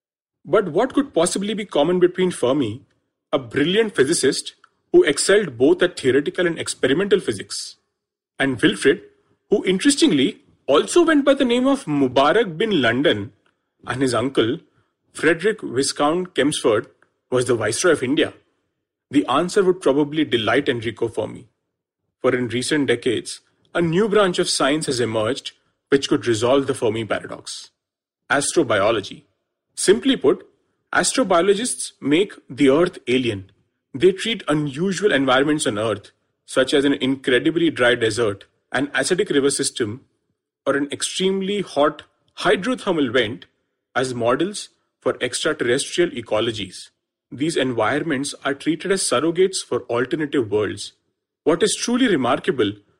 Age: 40-59